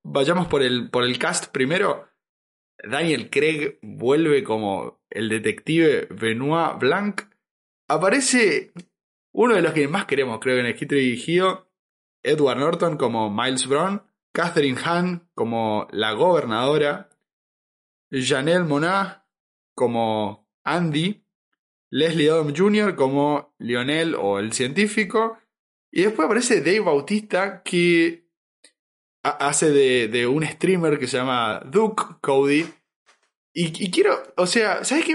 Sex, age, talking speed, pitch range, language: male, 20-39, 125 wpm, 145-205 Hz, Spanish